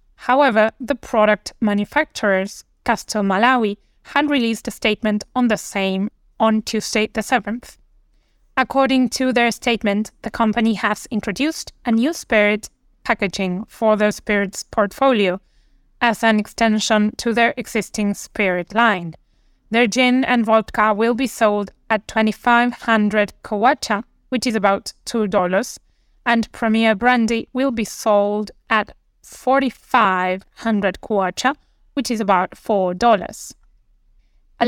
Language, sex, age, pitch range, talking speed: English, female, 20-39, 210-245 Hz, 125 wpm